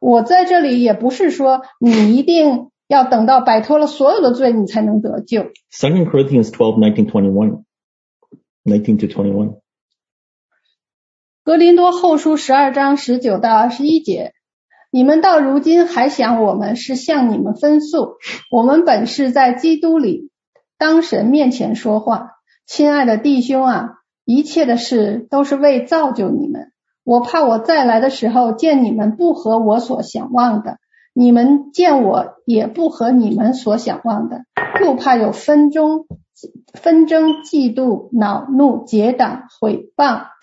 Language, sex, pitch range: Chinese, female, 225-295 Hz